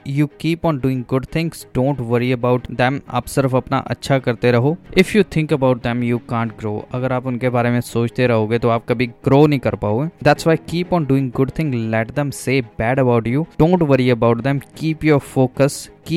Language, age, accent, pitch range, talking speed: Hindi, 20-39, native, 120-155 Hz, 145 wpm